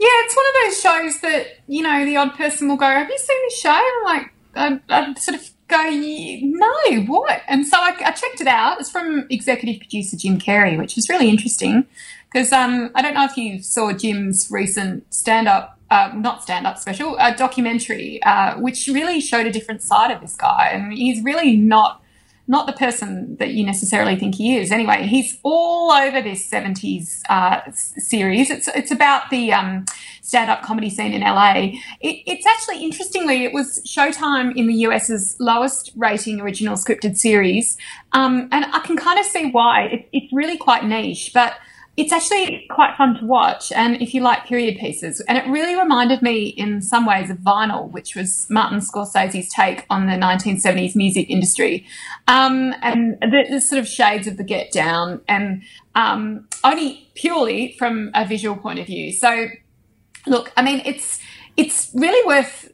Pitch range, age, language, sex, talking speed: 215-280 Hz, 20-39, English, female, 190 wpm